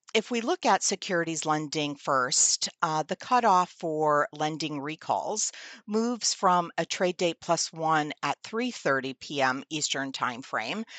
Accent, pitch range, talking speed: American, 145-185 Hz, 140 wpm